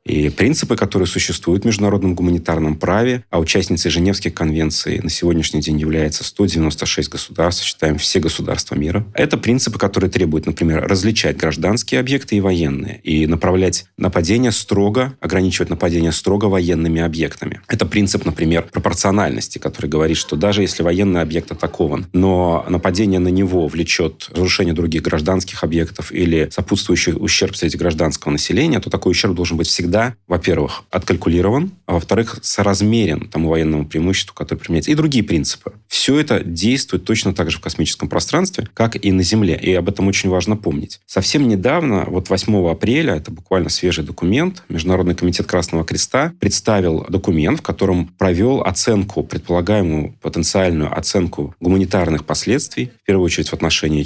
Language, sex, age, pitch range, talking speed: Russian, male, 30-49, 80-100 Hz, 150 wpm